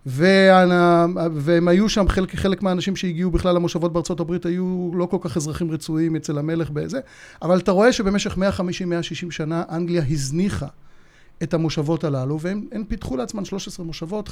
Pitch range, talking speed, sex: 155-195 Hz, 155 wpm, male